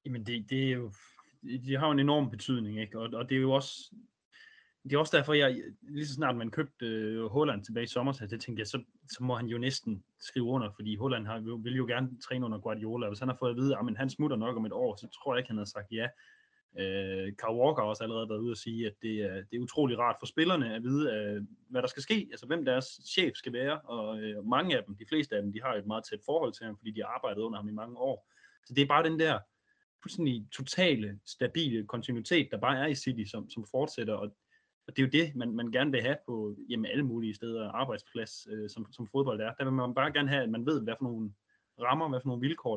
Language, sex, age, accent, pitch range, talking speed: Danish, male, 20-39, native, 110-140 Hz, 260 wpm